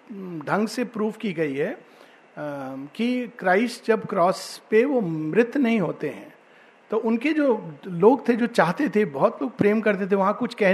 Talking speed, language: 185 wpm, Hindi